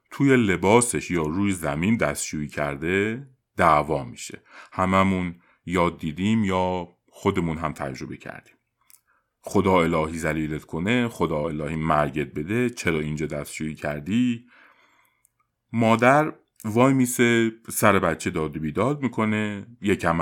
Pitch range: 80-115 Hz